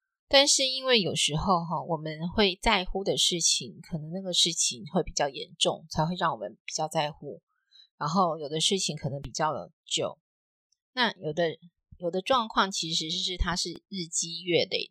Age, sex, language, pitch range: 30-49, female, Chinese, 165-205 Hz